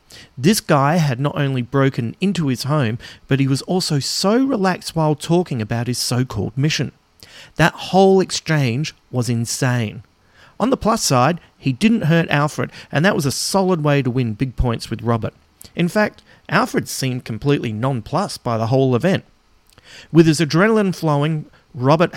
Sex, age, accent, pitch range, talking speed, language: male, 40-59, Australian, 120-160 Hz, 165 wpm, English